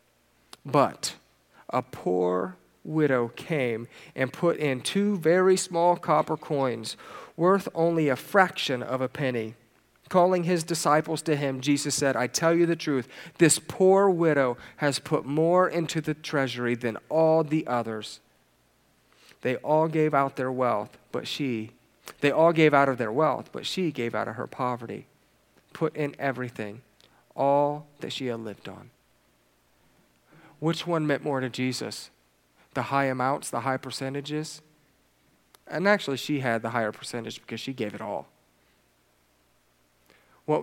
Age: 40-59